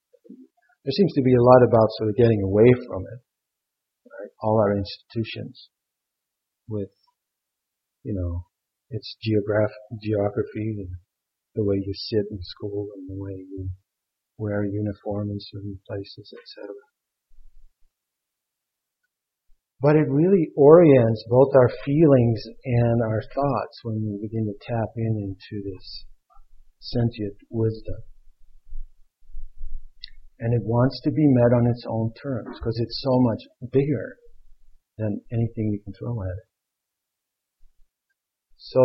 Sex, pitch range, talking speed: male, 100-125 Hz, 130 wpm